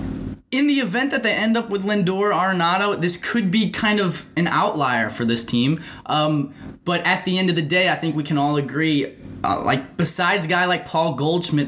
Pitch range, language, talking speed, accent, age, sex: 140-190 Hz, English, 215 wpm, American, 20-39, male